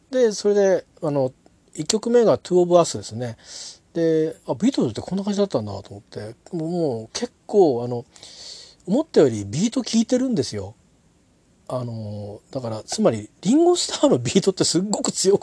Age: 40-59